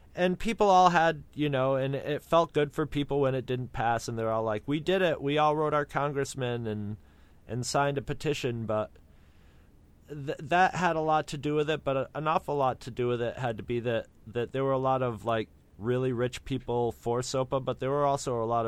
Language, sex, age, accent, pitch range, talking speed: English, male, 30-49, American, 95-140 Hz, 240 wpm